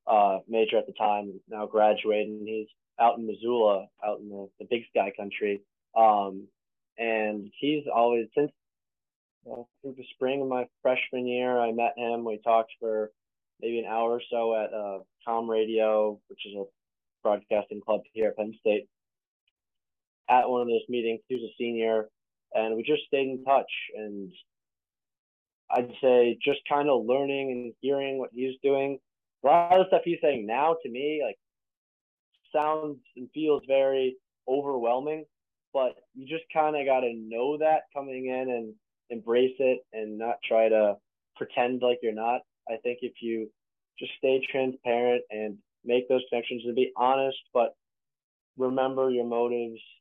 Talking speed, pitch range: 165 wpm, 110-130 Hz